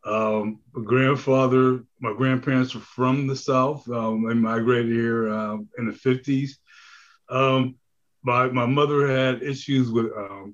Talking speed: 140 wpm